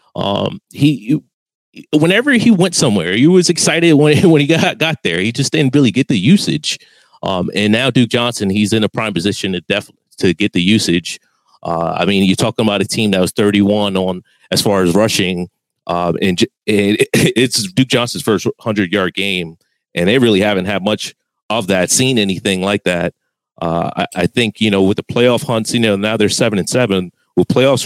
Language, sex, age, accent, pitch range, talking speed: English, male, 30-49, American, 95-120 Hz, 210 wpm